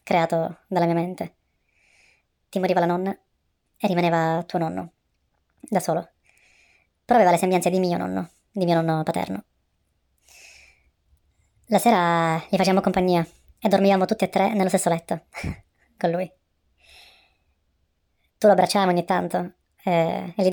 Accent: native